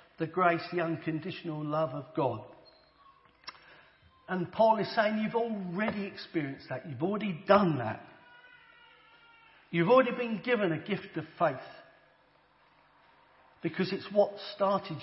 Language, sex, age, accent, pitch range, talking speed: English, male, 50-69, British, 155-200 Hz, 125 wpm